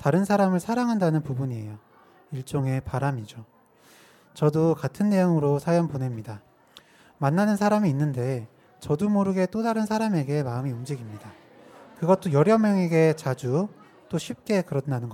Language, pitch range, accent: Korean, 135-180 Hz, native